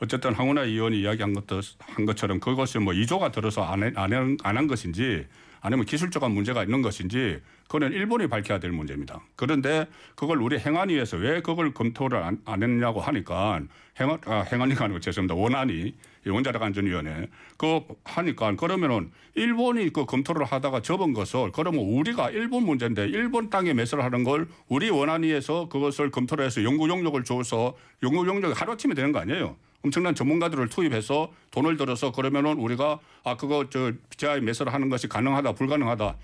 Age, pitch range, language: 60-79, 115-155 Hz, Korean